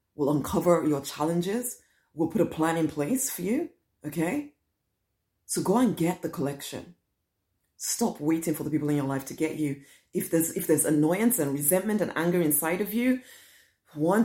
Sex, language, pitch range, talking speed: female, English, 145-195 Hz, 180 wpm